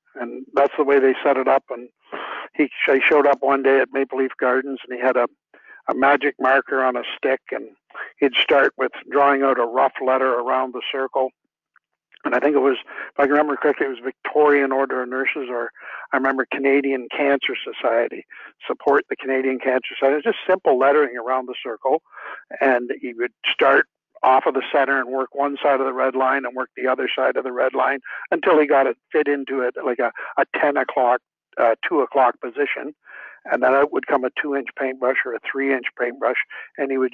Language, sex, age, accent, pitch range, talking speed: English, male, 60-79, American, 130-145 Hz, 220 wpm